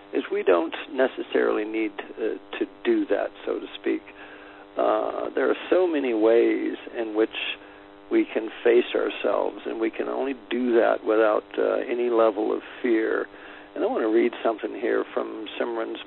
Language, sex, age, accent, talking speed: English, male, 50-69, American, 170 wpm